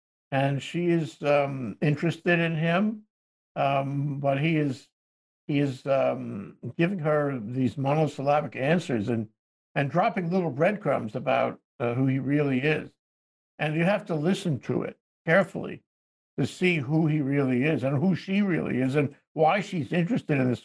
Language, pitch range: English, 125-160 Hz